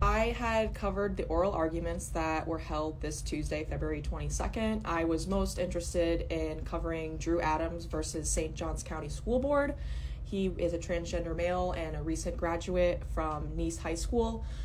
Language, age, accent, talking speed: English, 20-39, American, 165 wpm